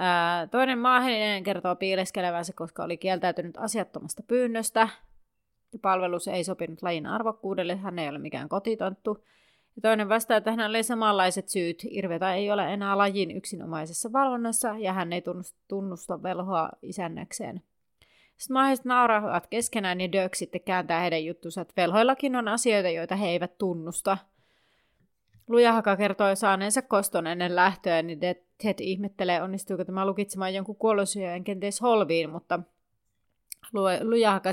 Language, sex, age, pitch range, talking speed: Finnish, female, 30-49, 175-220 Hz, 135 wpm